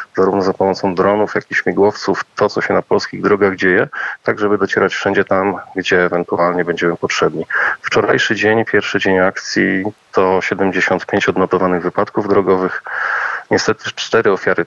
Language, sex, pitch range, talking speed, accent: Polish, male, 90-100 Hz, 145 wpm, native